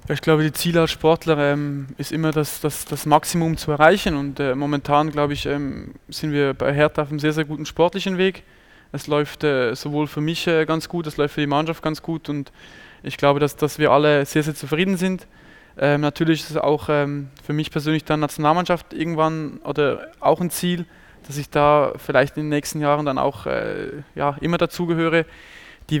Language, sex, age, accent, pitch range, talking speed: German, male, 20-39, German, 145-160 Hz, 210 wpm